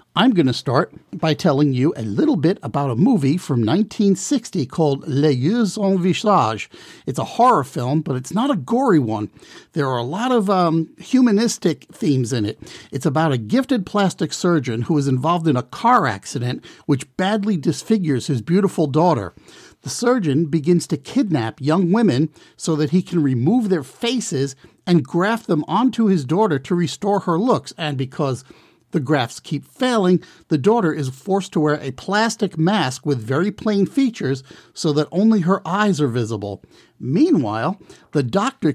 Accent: American